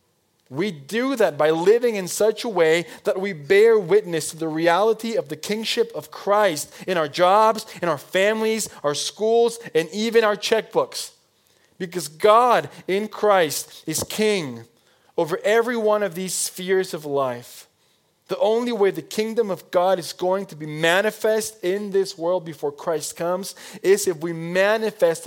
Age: 20-39